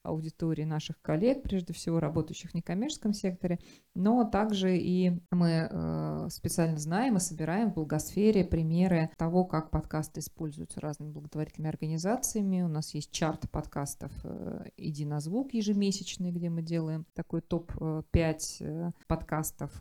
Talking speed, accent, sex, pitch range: 125 wpm, native, female, 155-185 Hz